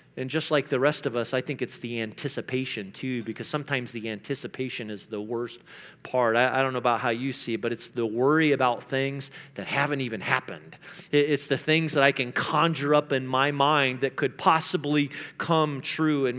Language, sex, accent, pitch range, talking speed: English, male, American, 115-140 Hz, 210 wpm